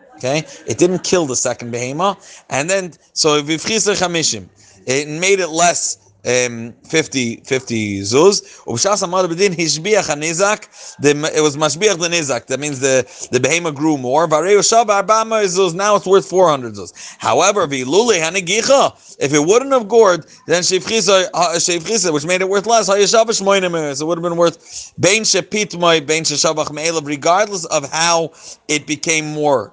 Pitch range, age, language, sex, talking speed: 135-185 Hz, 30-49, English, male, 155 wpm